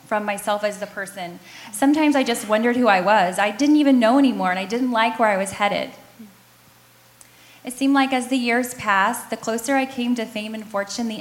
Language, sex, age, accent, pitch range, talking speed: English, female, 10-29, American, 200-235 Hz, 220 wpm